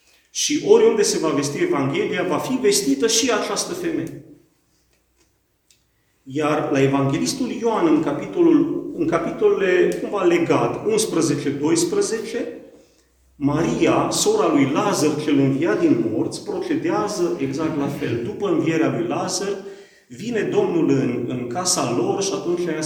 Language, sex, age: Romanian, male, 40-59